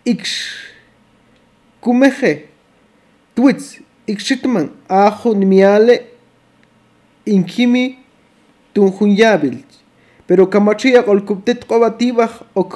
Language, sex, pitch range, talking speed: Spanish, male, 200-250 Hz, 55 wpm